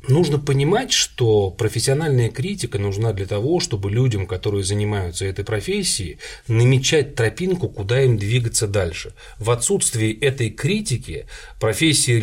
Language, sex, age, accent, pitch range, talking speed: Russian, male, 30-49, native, 100-135 Hz, 125 wpm